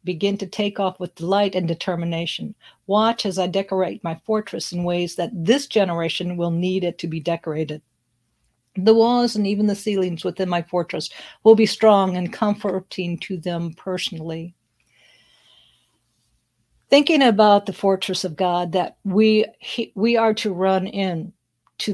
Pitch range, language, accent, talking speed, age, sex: 175-210 Hz, English, American, 155 wpm, 60-79, female